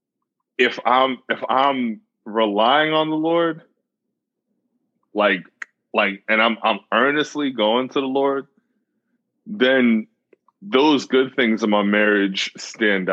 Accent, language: American, English